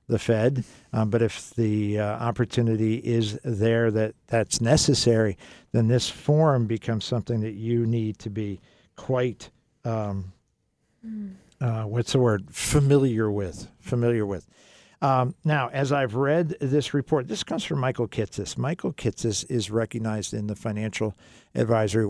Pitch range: 105-125 Hz